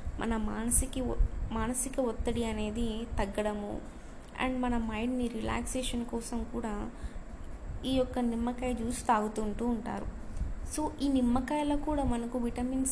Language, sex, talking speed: Telugu, female, 110 wpm